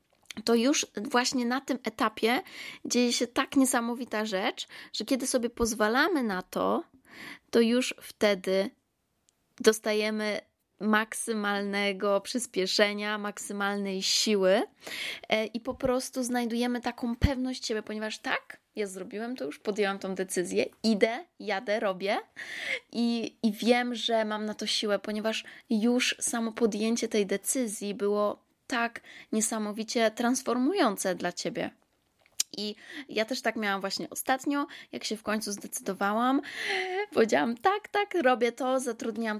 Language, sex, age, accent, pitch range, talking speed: Polish, female, 20-39, native, 205-245 Hz, 125 wpm